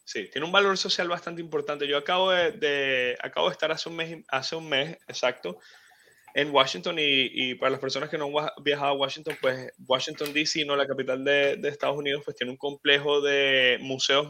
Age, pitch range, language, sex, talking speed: 20-39, 135-155 Hz, Spanish, male, 210 wpm